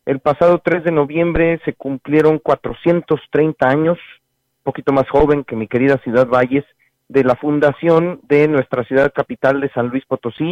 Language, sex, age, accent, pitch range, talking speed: Spanish, male, 40-59, Mexican, 130-160 Hz, 165 wpm